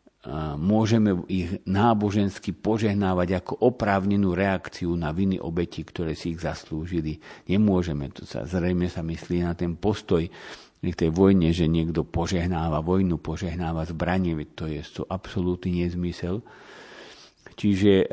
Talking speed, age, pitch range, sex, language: 120 wpm, 50-69, 80-95 Hz, male, Slovak